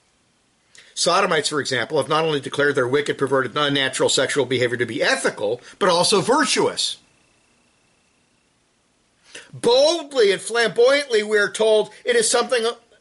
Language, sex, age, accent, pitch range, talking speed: English, male, 50-69, American, 160-245 Hz, 130 wpm